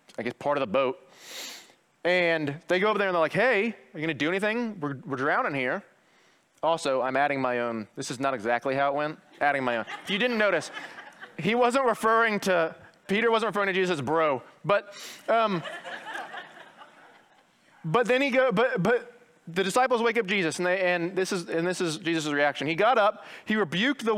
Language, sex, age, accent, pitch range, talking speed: English, male, 30-49, American, 150-210 Hz, 210 wpm